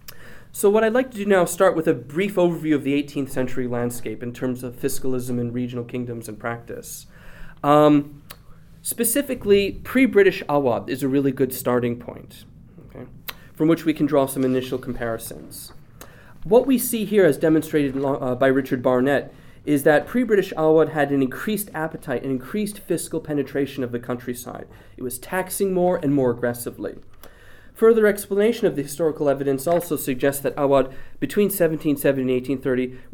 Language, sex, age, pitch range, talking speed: English, male, 30-49, 130-180 Hz, 165 wpm